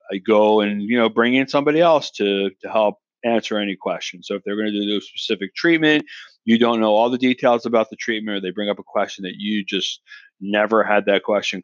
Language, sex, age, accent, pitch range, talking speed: English, male, 40-59, American, 95-115 Hz, 235 wpm